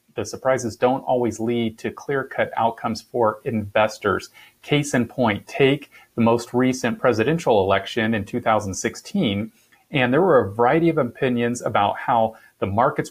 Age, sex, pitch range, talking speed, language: 40-59, male, 110-130 Hz, 145 wpm, English